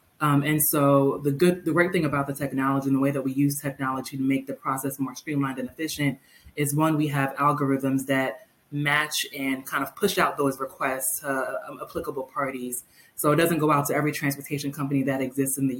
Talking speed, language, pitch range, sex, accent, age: 215 wpm, English, 135-150 Hz, female, American, 20-39